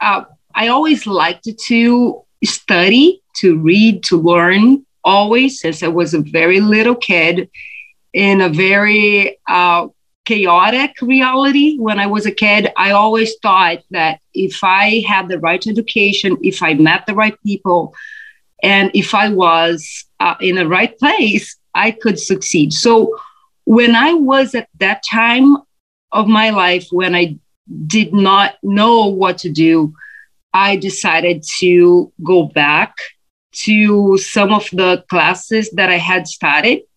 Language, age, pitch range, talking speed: English, 40-59, 175-235 Hz, 145 wpm